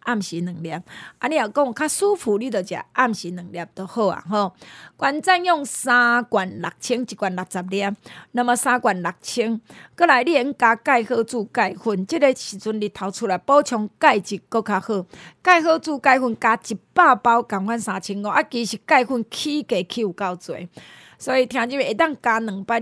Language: Chinese